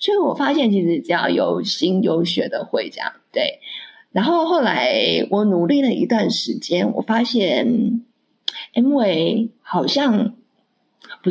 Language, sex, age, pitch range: Chinese, female, 20-39, 195-255 Hz